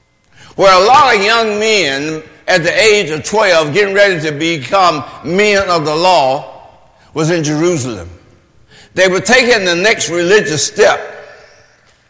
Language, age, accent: English, 60-79, American